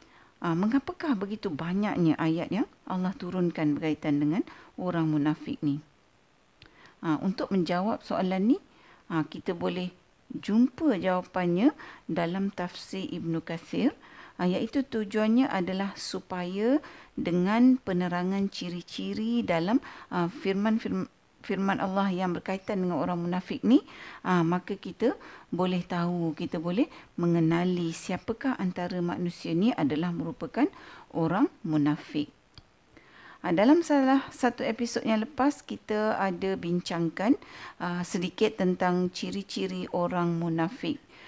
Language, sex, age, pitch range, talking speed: Malay, female, 50-69, 175-230 Hz, 115 wpm